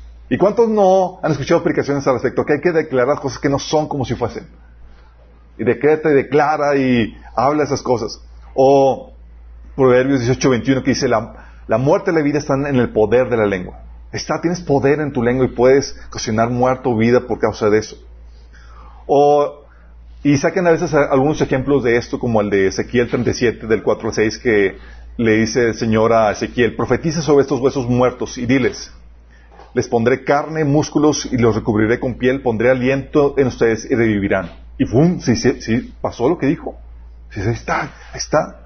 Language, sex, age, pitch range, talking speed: Spanish, male, 40-59, 110-145 Hz, 190 wpm